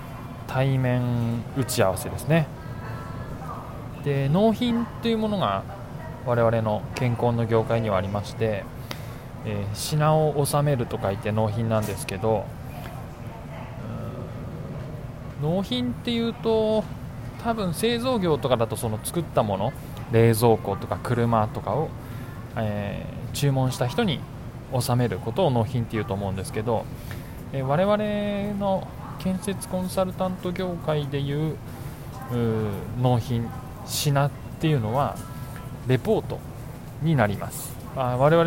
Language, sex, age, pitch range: Japanese, male, 20-39, 120-155 Hz